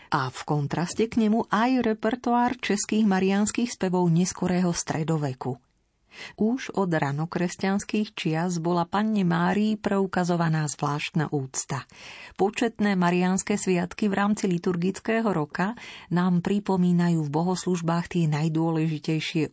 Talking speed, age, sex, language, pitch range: 110 wpm, 40-59, female, Slovak, 155-200 Hz